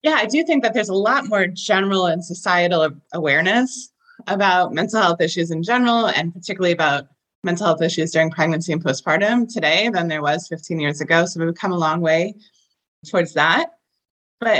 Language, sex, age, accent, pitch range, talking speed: English, female, 20-39, American, 160-210 Hz, 185 wpm